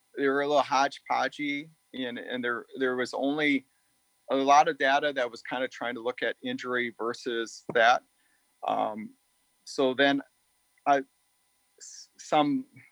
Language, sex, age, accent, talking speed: English, male, 40-59, American, 145 wpm